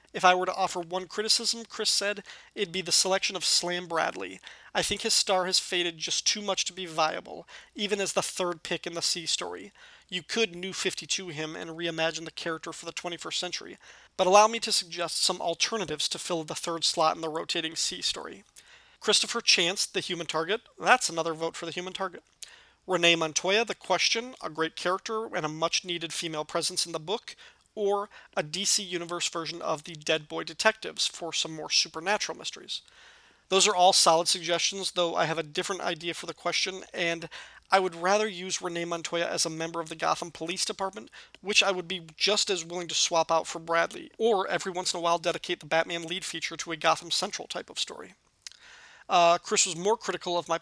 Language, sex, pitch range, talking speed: English, male, 165-195 Hz, 205 wpm